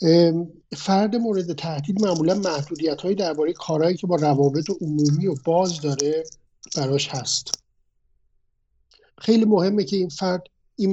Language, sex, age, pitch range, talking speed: Swedish, male, 50-69, 150-195 Hz, 125 wpm